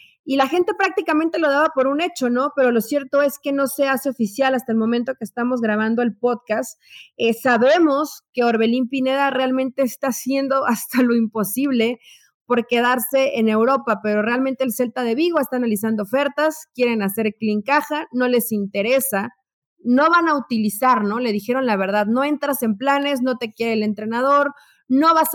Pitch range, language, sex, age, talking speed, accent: 225-275 Hz, Spanish, female, 30-49, 185 wpm, Mexican